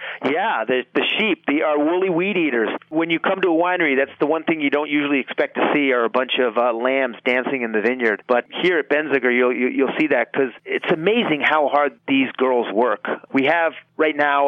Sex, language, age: male, English, 40-59